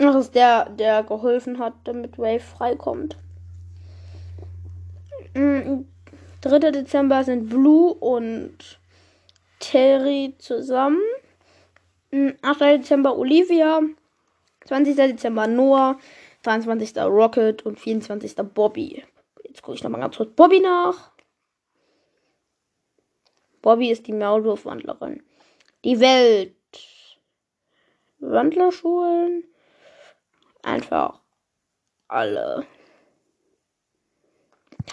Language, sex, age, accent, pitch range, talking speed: German, female, 10-29, German, 225-310 Hz, 75 wpm